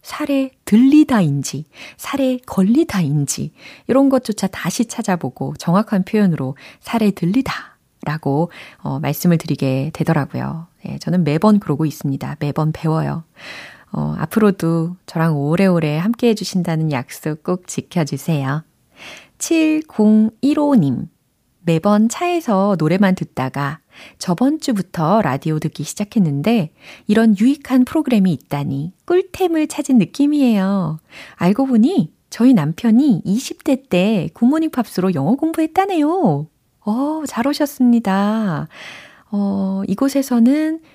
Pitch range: 155-250 Hz